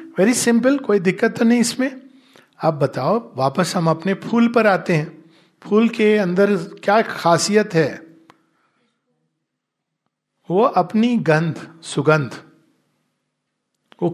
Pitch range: 160-220 Hz